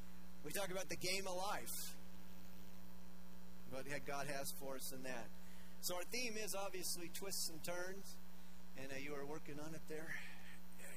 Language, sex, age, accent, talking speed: English, male, 40-59, American, 180 wpm